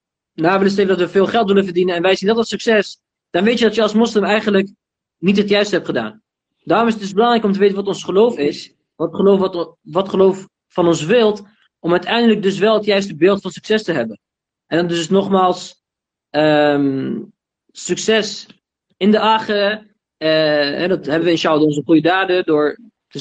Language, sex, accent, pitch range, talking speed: Dutch, male, Dutch, 160-205 Hz, 205 wpm